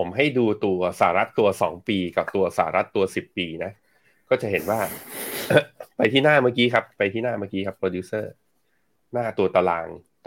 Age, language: 20-39, Thai